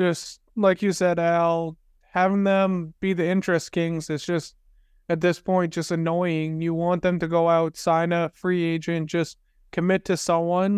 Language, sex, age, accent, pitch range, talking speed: English, male, 20-39, American, 165-190 Hz, 180 wpm